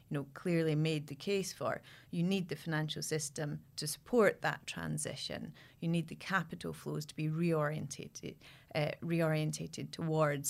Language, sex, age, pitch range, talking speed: English, female, 30-49, 150-175 Hz, 155 wpm